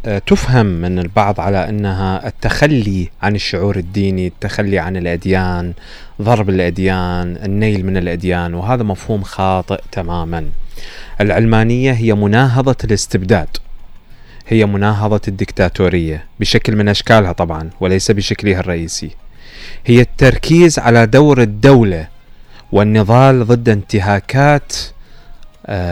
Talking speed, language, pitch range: 100 wpm, Arabic, 95-120 Hz